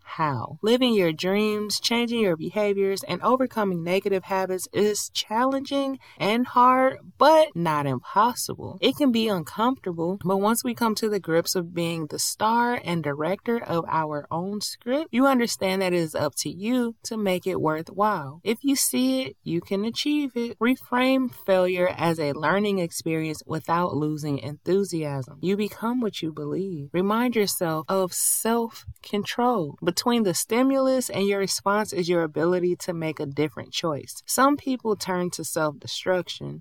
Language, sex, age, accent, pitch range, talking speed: English, female, 20-39, American, 160-225 Hz, 160 wpm